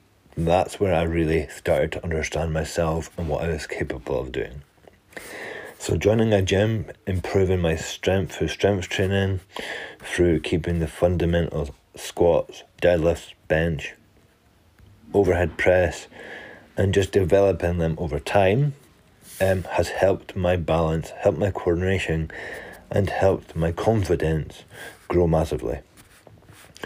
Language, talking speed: English, 120 wpm